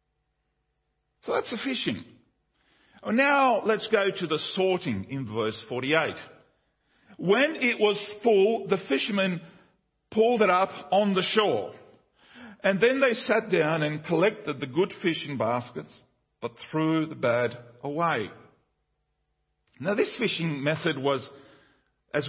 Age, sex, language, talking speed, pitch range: 50-69, male, English, 125 wpm, 130-170 Hz